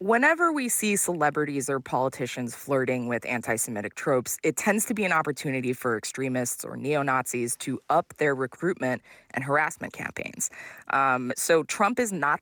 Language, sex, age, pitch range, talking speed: English, female, 20-39, 130-165 Hz, 155 wpm